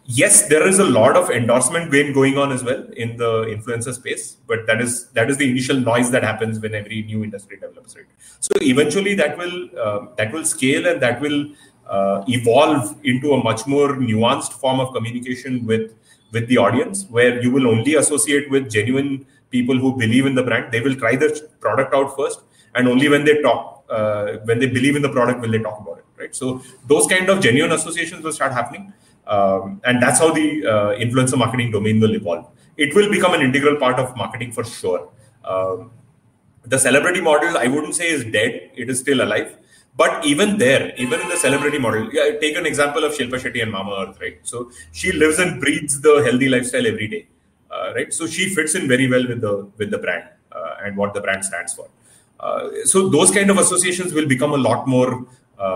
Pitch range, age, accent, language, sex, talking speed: 115-150 Hz, 30-49, native, Hindi, male, 215 wpm